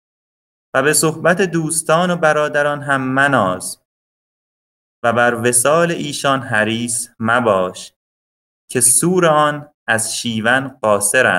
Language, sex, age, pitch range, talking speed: English, male, 30-49, 115-145 Hz, 105 wpm